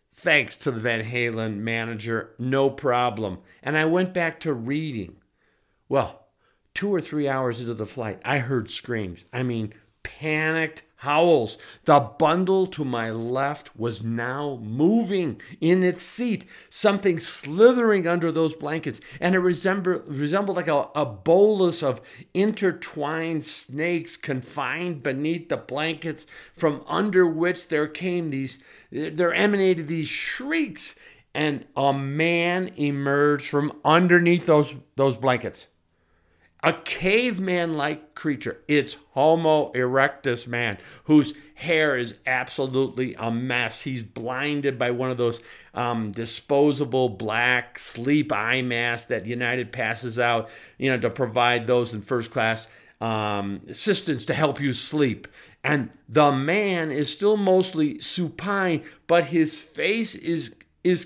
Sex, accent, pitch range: male, American, 125-175 Hz